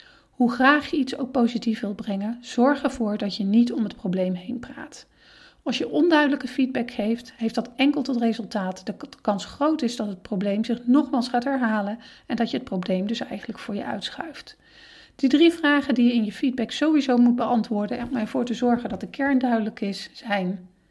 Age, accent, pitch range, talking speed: 40-59, Dutch, 220-270 Hz, 205 wpm